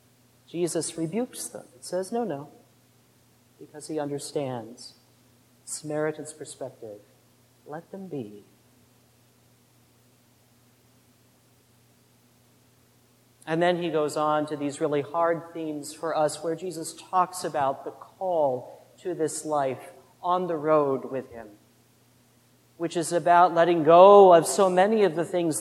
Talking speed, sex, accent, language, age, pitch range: 120 wpm, male, American, English, 40-59, 130-180 Hz